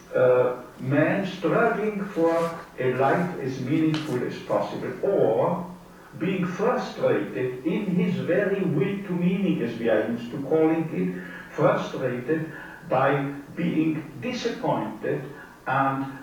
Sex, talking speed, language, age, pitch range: male, 115 wpm, Russian, 60-79, 140-185 Hz